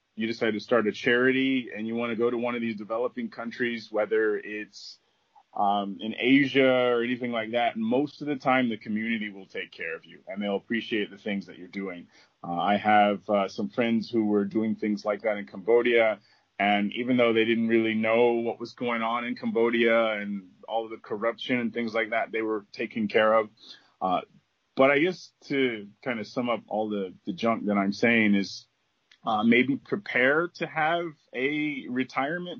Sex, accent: male, American